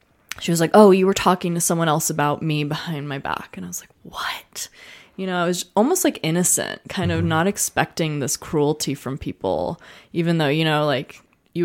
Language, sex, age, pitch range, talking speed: English, female, 20-39, 150-185 Hz, 210 wpm